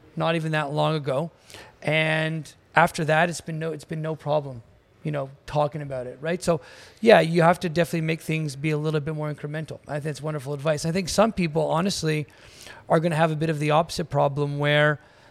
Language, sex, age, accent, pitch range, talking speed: English, male, 30-49, American, 150-165 Hz, 215 wpm